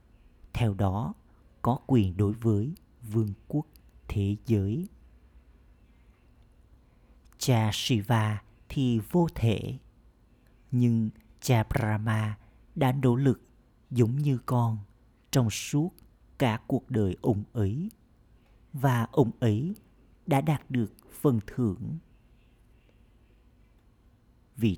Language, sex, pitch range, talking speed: Vietnamese, male, 105-130 Hz, 95 wpm